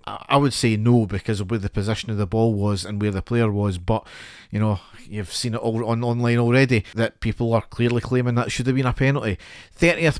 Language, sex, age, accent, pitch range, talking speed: English, male, 40-59, British, 110-125 Hz, 235 wpm